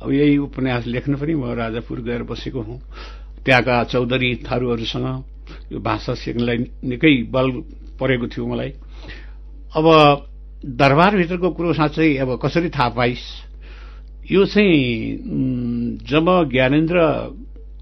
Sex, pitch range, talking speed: male, 115-140 Hz, 70 wpm